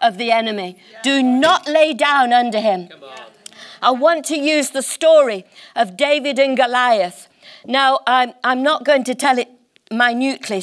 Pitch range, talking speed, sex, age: 220-300 Hz, 160 wpm, female, 50-69